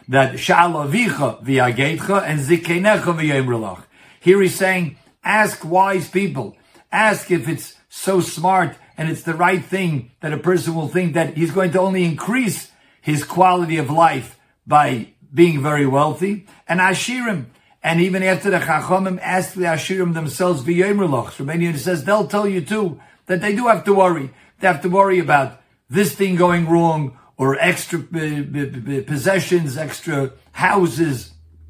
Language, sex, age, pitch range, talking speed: English, male, 50-69, 145-185 Hz, 150 wpm